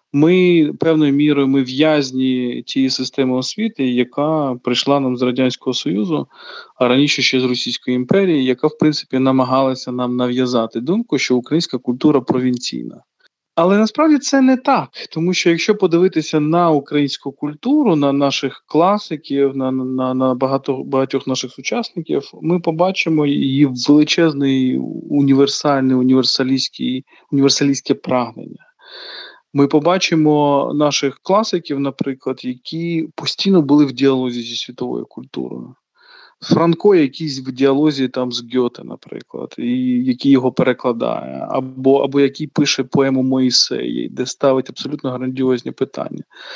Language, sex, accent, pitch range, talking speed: Ukrainian, male, native, 130-160 Hz, 125 wpm